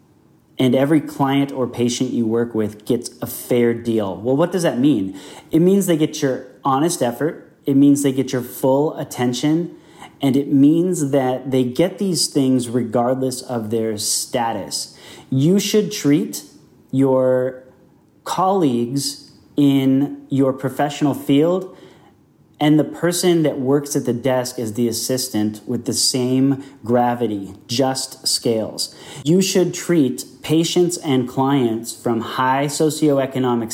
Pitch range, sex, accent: 120-150 Hz, male, American